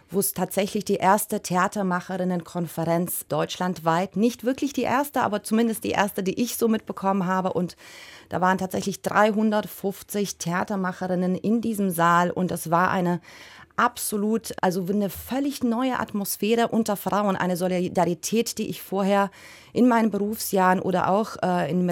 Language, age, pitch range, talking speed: German, 30-49, 185-225 Hz, 145 wpm